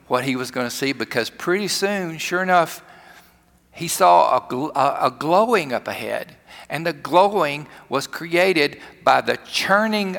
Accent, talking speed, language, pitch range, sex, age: American, 155 wpm, English, 125-175 Hz, male, 50-69